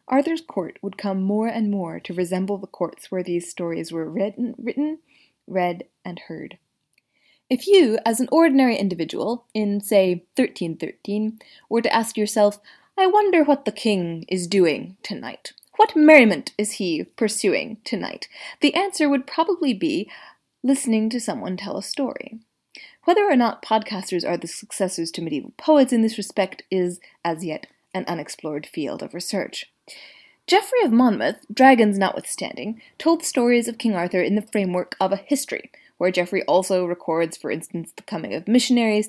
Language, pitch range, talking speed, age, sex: English, 190-265 Hz, 165 wpm, 20-39, female